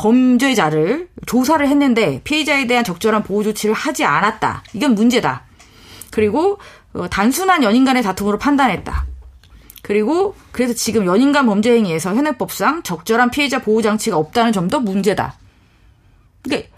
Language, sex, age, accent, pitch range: Korean, female, 30-49, native, 180-265 Hz